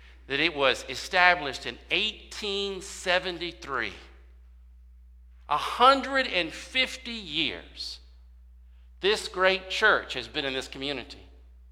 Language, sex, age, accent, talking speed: English, male, 50-69, American, 80 wpm